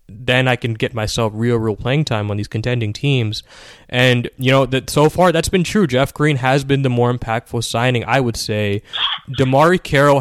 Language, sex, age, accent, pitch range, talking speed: English, male, 20-39, American, 110-135 Hz, 205 wpm